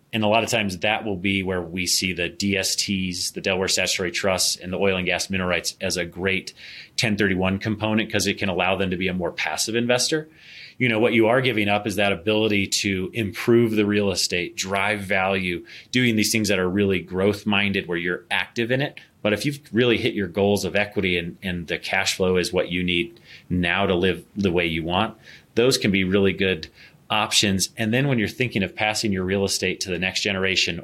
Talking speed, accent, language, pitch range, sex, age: 225 wpm, American, English, 95-110 Hz, male, 30-49